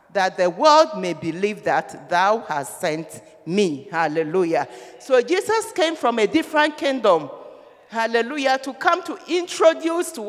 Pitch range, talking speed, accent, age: 220-335 Hz, 140 wpm, Nigerian, 50-69